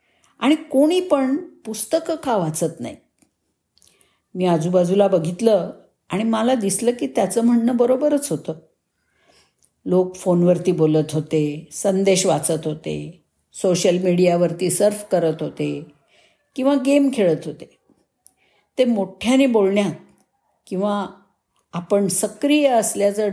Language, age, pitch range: Marathi, 50-69, 175-240 Hz